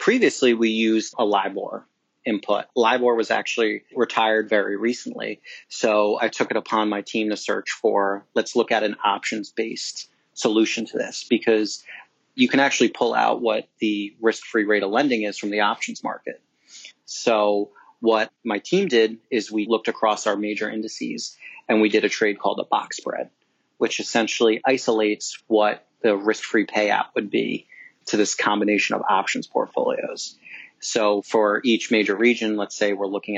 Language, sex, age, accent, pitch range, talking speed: English, male, 30-49, American, 105-115 Hz, 165 wpm